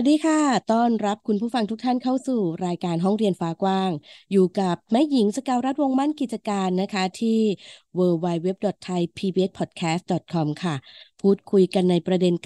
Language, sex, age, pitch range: Thai, female, 20-39, 185-230 Hz